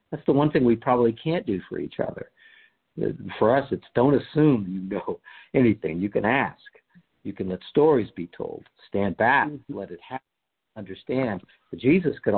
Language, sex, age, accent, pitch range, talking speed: English, male, 50-69, American, 100-135 Hz, 180 wpm